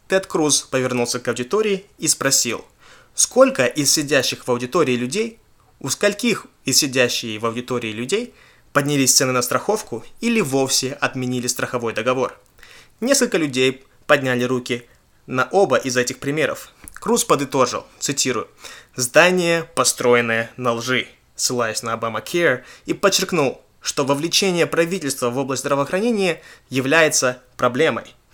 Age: 20-39